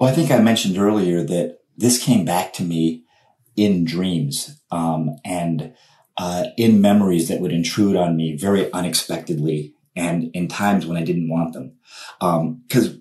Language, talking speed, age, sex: English, 160 wpm, 40-59, male